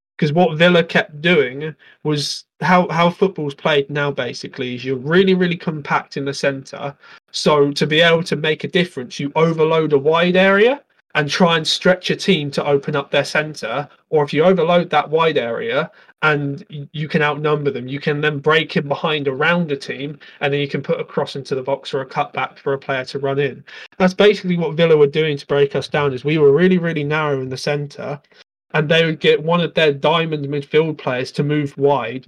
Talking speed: 215 wpm